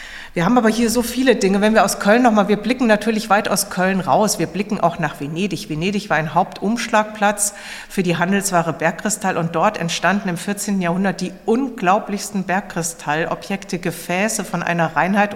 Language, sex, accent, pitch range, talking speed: German, female, German, 170-210 Hz, 175 wpm